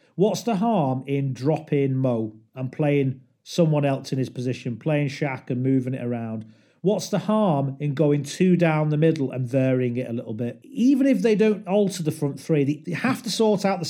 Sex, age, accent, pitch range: male, 40-59, British, 135-180 Hz